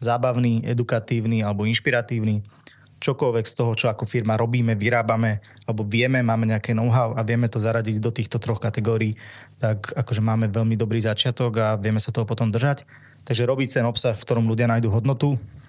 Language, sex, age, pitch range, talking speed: Slovak, male, 20-39, 110-125 Hz, 175 wpm